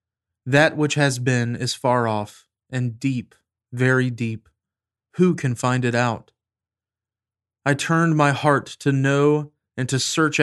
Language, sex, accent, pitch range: English, male, American, 110-135 Hz